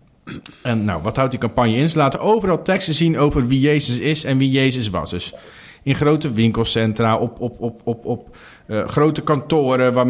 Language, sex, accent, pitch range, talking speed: Dutch, male, Dutch, 120-165 Hz, 195 wpm